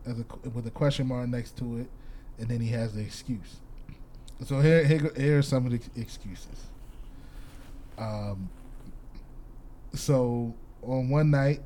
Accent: American